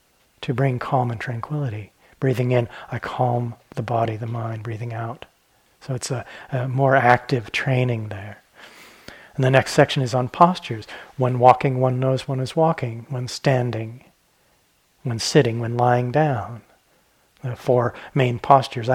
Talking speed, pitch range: 150 wpm, 120-145 Hz